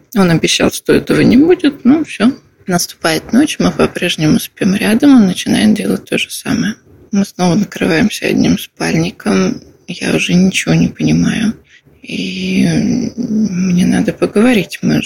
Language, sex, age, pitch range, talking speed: Russian, female, 20-39, 180-230 Hz, 140 wpm